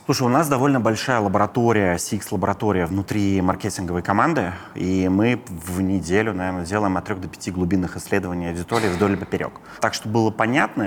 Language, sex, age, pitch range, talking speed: Russian, male, 30-49, 100-130 Hz, 155 wpm